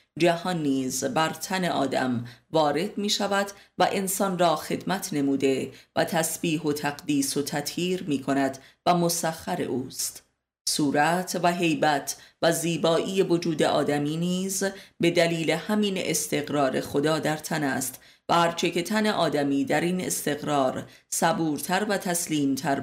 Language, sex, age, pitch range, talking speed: Persian, female, 30-49, 145-180 Hz, 135 wpm